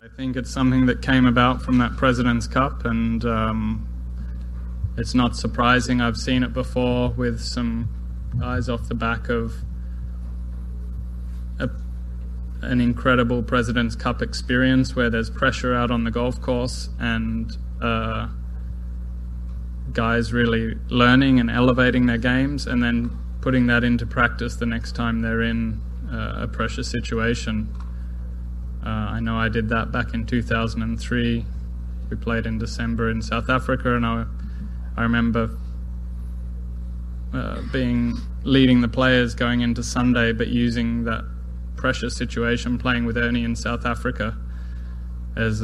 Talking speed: 135 wpm